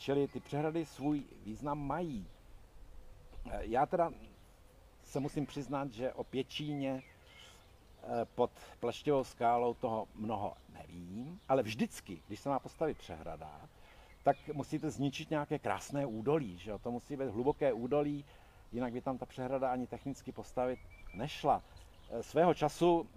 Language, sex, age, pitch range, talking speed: Czech, male, 60-79, 105-145 Hz, 130 wpm